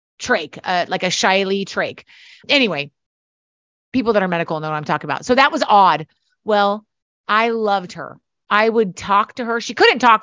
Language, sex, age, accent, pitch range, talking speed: English, female, 30-49, American, 165-215 Hz, 190 wpm